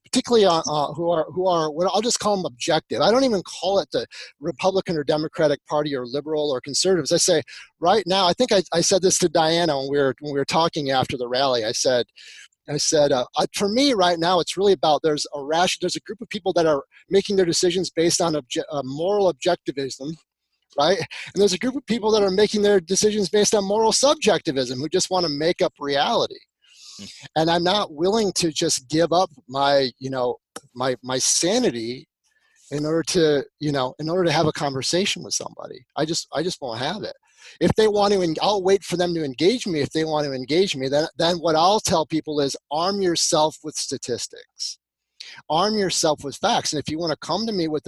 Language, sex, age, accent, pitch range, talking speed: English, male, 30-49, American, 145-190 Hz, 225 wpm